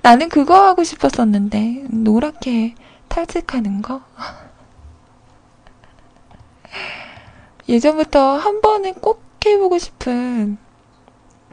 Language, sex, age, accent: Korean, female, 20-39, native